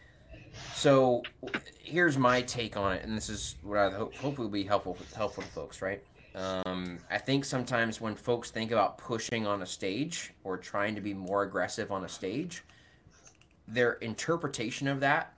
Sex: male